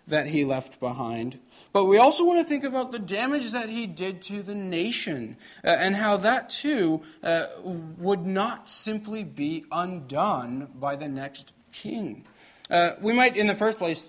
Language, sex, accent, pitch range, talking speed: English, male, American, 140-185 Hz, 175 wpm